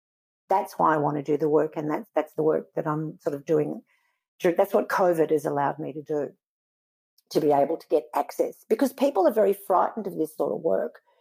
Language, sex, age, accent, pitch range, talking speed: English, female, 50-69, Australian, 155-215 Hz, 225 wpm